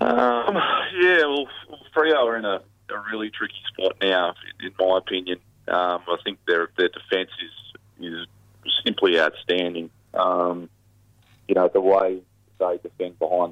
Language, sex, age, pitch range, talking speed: English, male, 30-49, 85-110 Hz, 150 wpm